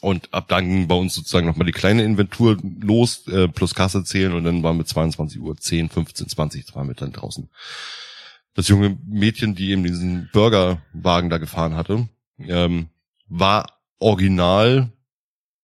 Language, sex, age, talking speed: German, male, 20-39, 160 wpm